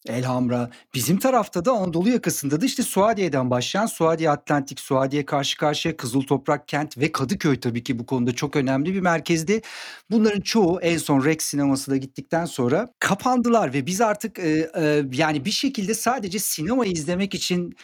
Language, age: Turkish, 50-69